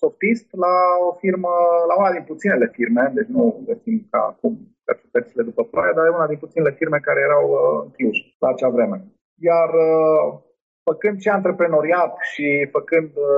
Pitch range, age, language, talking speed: 160-220 Hz, 30-49, Romanian, 155 wpm